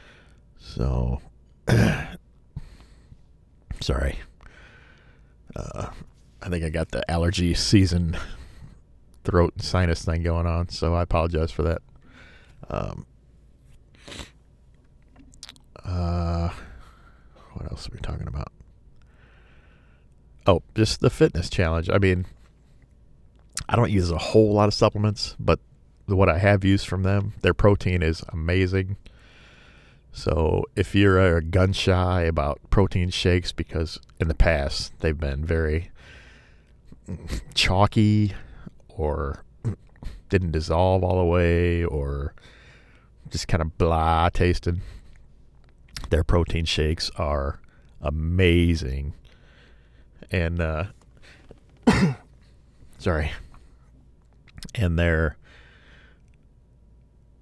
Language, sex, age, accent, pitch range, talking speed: English, male, 40-59, American, 75-95 Hz, 95 wpm